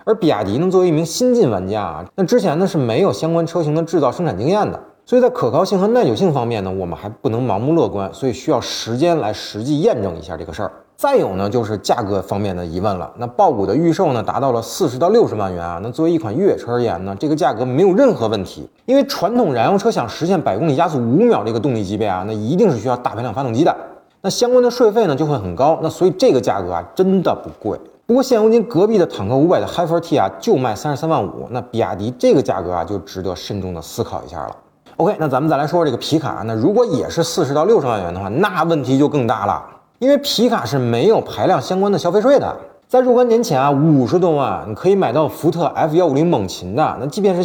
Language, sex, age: Chinese, male, 30-49